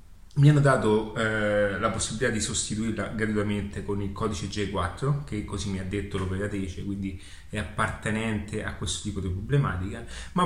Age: 30-49